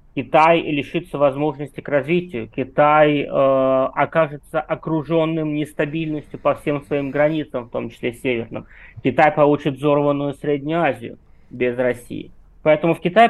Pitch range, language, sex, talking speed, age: 130-160 Hz, Russian, male, 130 wpm, 20-39